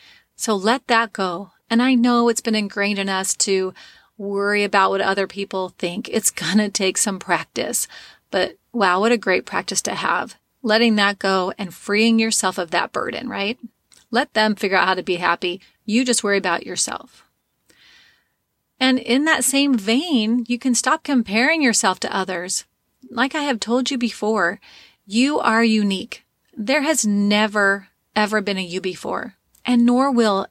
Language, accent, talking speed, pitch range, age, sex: English, American, 175 wpm, 195-240 Hz, 30-49, female